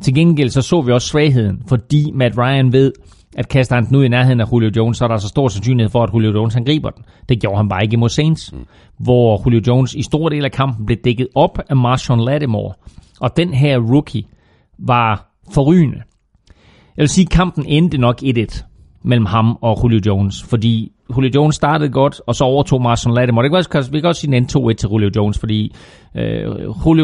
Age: 30-49